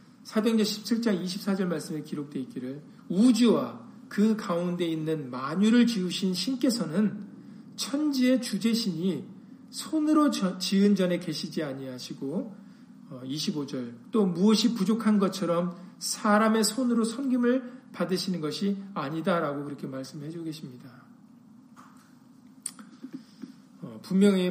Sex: male